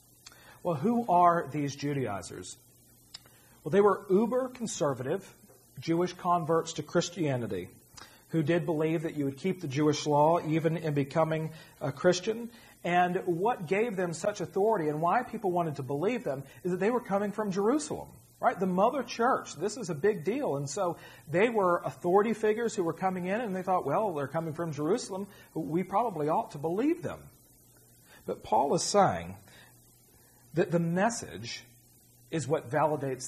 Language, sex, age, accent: English, male, 40-59, American